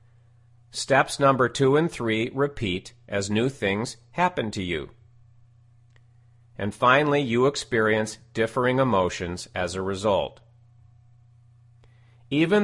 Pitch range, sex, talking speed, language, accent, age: 110-130 Hz, male, 105 wpm, English, American, 40-59